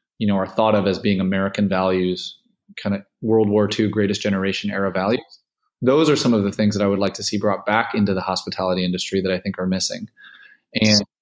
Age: 20-39